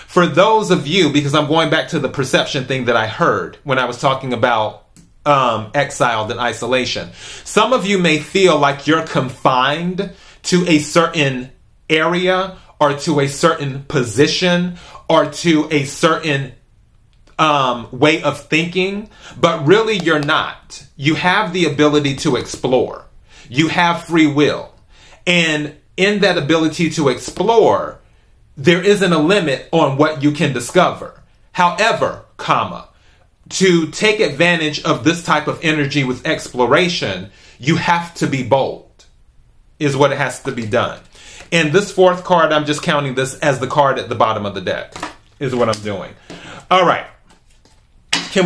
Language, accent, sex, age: English, American, male, 30-49